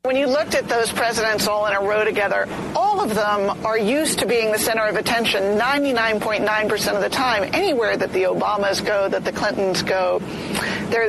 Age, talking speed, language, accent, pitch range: 50-69, 195 wpm, English, American, 200-235 Hz